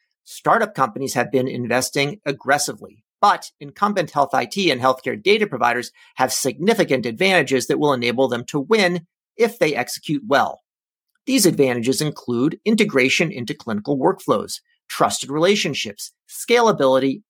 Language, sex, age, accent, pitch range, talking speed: English, male, 40-59, American, 130-195 Hz, 130 wpm